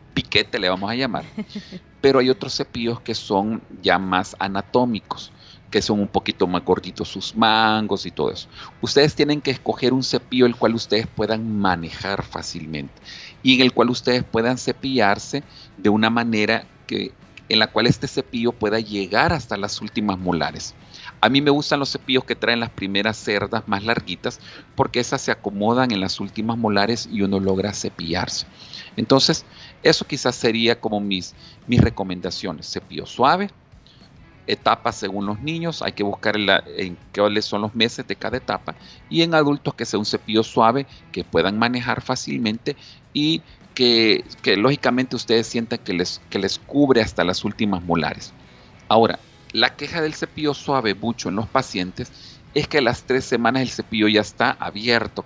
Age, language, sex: 40-59, Spanish, male